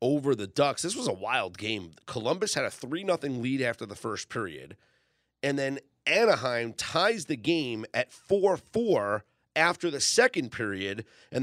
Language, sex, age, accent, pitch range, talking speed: English, male, 30-49, American, 115-155 Hz, 155 wpm